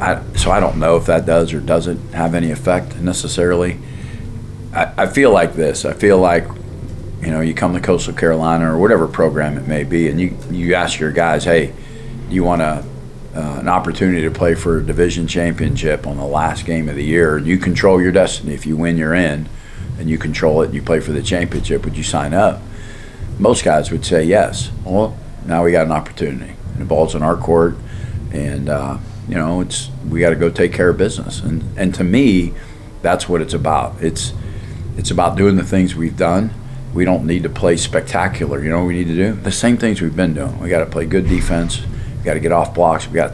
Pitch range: 80-95 Hz